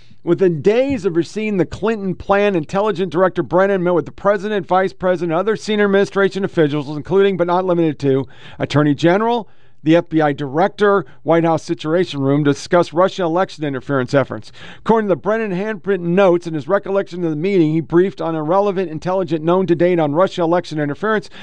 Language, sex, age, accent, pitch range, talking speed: English, male, 50-69, American, 155-195 Hz, 180 wpm